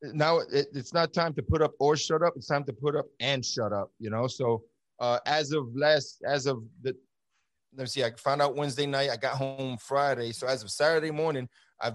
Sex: male